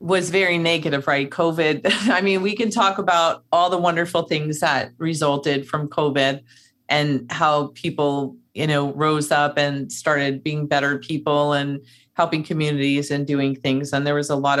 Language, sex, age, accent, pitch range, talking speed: English, female, 40-59, American, 145-170 Hz, 175 wpm